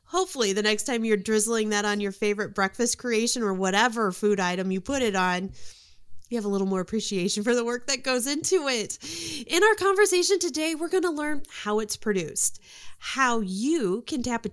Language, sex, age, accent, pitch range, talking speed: English, female, 30-49, American, 210-280 Hz, 200 wpm